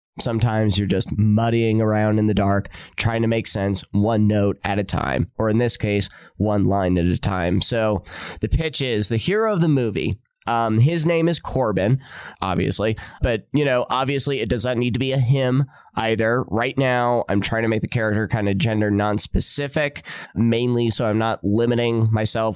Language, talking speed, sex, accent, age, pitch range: English, 190 wpm, male, American, 20-39, 105-130 Hz